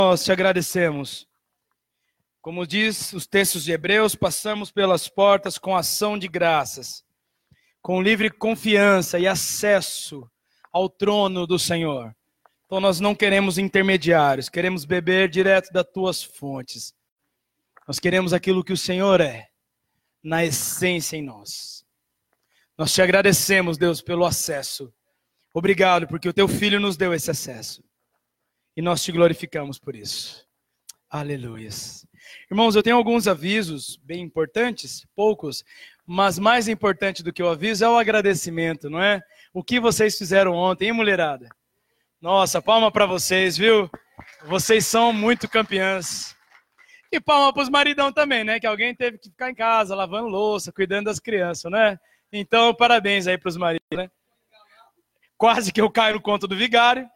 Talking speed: 145 wpm